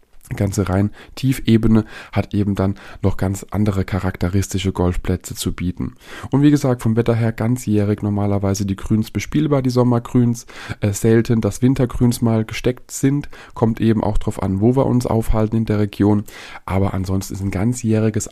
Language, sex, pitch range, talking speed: German, male, 100-120 Hz, 155 wpm